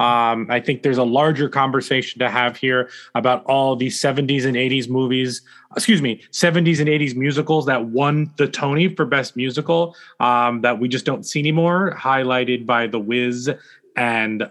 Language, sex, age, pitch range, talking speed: English, male, 20-39, 125-160 Hz, 175 wpm